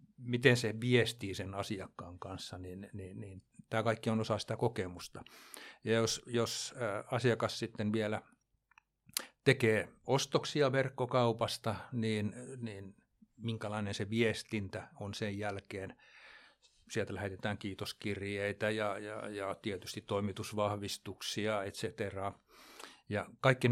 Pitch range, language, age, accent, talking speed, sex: 100-120 Hz, Finnish, 60-79, native, 110 wpm, male